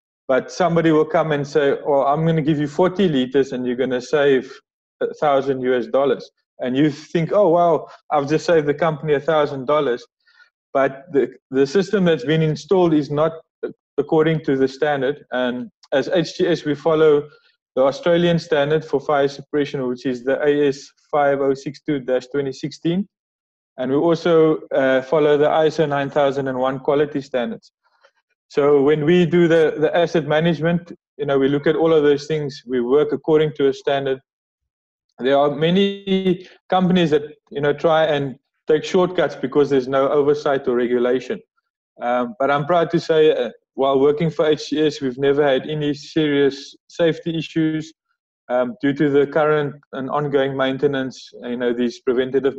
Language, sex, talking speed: English, male, 160 wpm